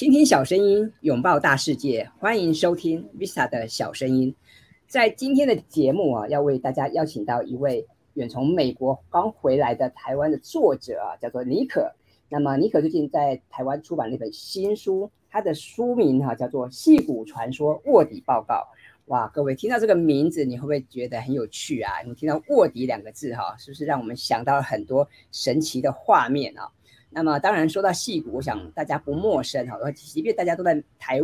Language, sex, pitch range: Chinese, female, 130-195 Hz